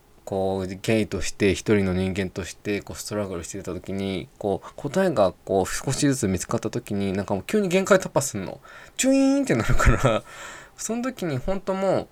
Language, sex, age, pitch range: Japanese, male, 20-39, 100-150 Hz